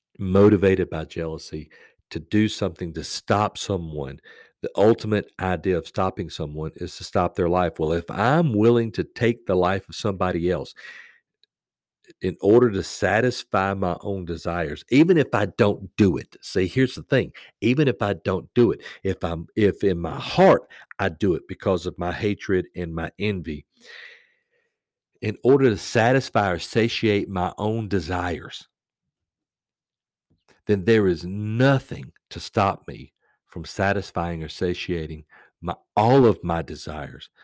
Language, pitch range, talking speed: English, 85-105 Hz, 150 wpm